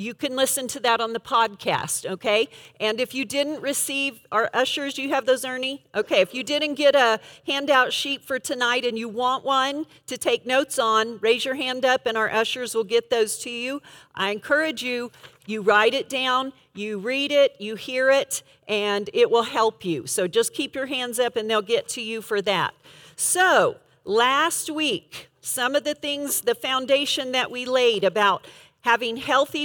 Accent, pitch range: American, 220-280 Hz